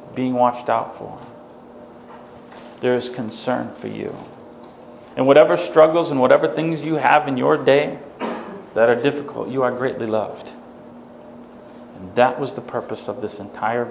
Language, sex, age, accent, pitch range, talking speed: English, male, 40-59, American, 105-130 Hz, 150 wpm